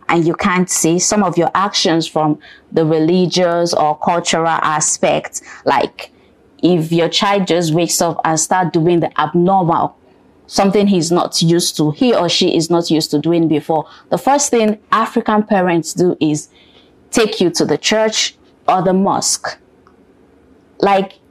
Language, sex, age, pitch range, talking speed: English, female, 20-39, 170-225 Hz, 160 wpm